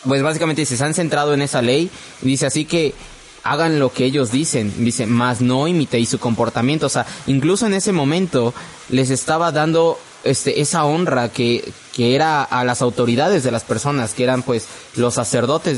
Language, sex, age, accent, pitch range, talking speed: Spanish, male, 20-39, Mexican, 120-150 Hz, 185 wpm